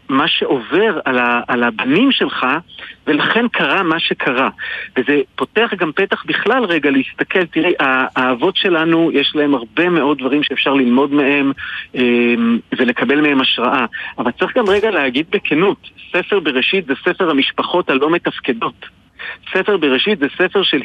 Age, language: 50-69, Hebrew